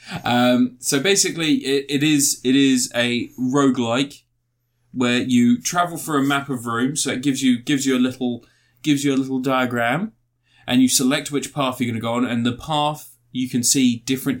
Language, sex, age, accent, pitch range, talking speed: English, male, 20-39, British, 115-130 Hz, 195 wpm